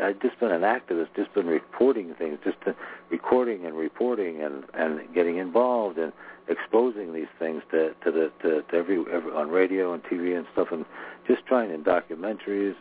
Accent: American